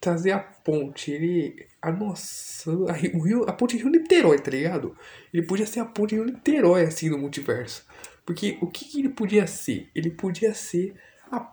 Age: 20-39